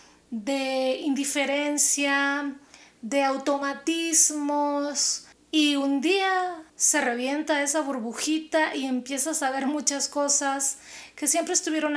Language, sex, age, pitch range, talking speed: Spanish, female, 30-49, 265-315 Hz, 100 wpm